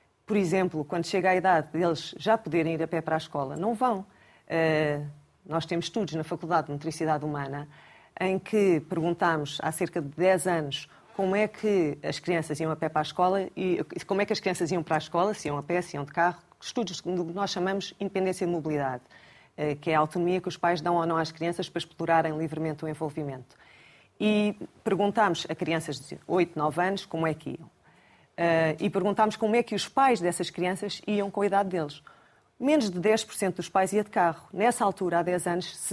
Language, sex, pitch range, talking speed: Portuguese, female, 160-195 Hz, 210 wpm